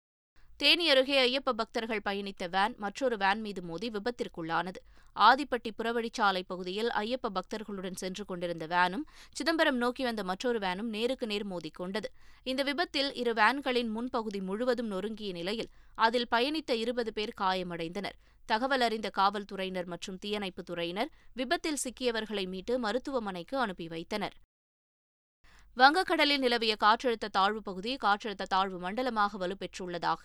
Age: 20-39